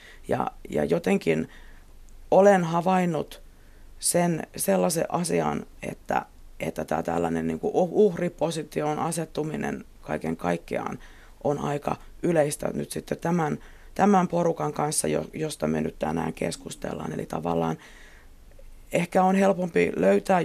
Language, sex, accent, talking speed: Finnish, female, native, 110 wpm